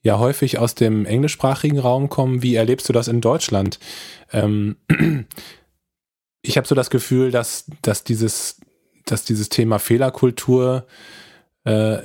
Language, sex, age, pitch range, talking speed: German, male, 20-39, 105-125 Hz, 135 wpm